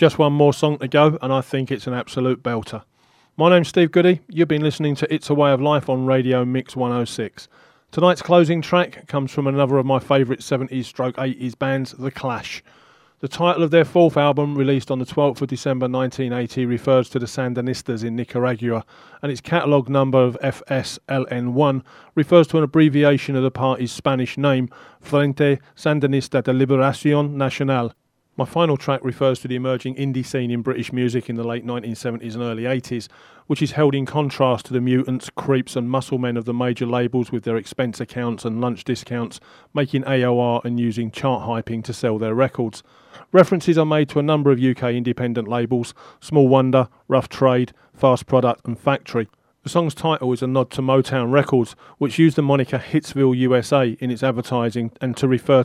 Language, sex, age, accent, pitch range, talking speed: English, male, 40-59, British, 125-145 Hz, 190 wpm